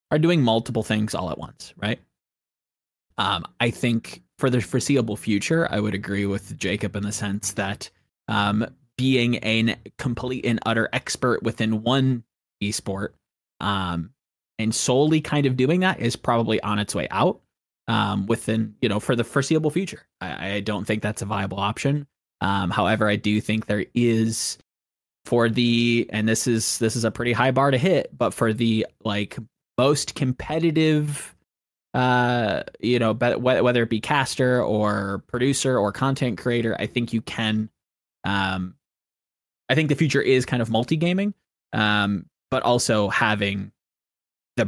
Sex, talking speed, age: male, 165 wpm, 20-39